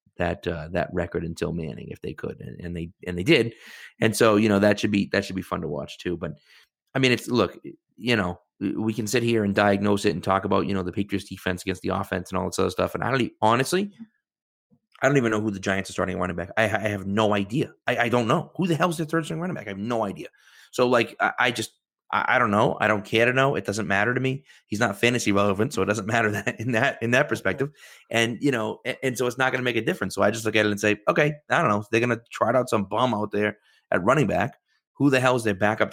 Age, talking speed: 30-49, 280 wpm